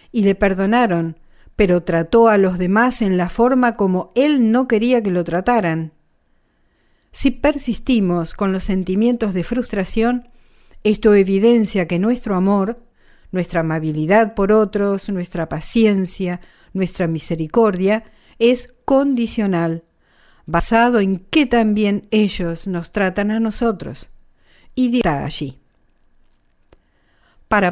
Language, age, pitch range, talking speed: English, 50-69, 175-235 Hz, 115 wpm